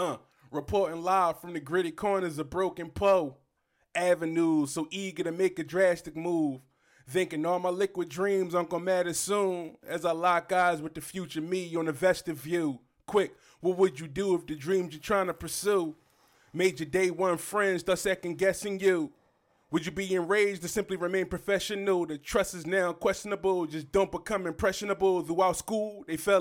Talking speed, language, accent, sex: 180 wpm, English, American, male